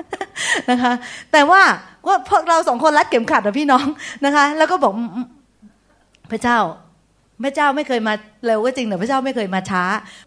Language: Thai